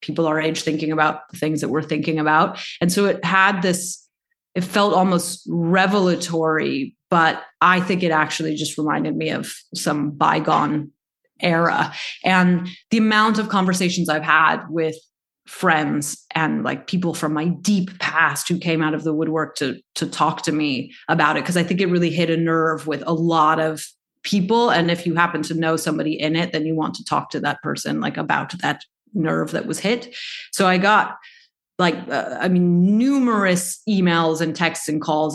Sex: female